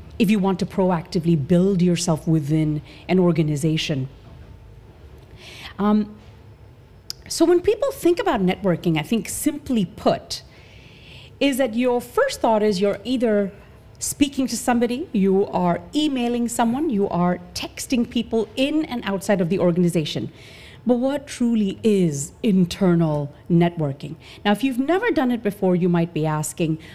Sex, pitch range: female, 170-235 Hz